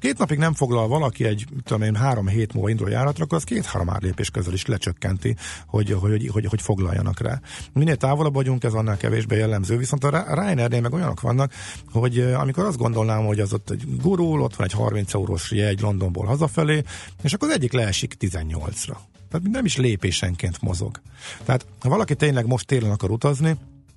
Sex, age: male, 50-69